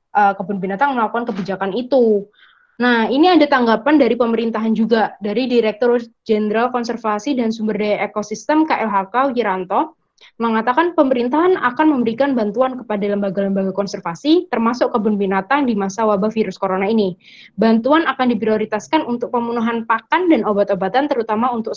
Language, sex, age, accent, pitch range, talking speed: Indonesian, female, 20-39, native, 210-255 Hz, 140 wpm